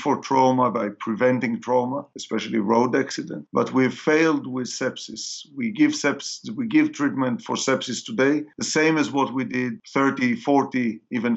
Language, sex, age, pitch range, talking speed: English, male, 50-69, 120-145 Hz, 165 wpm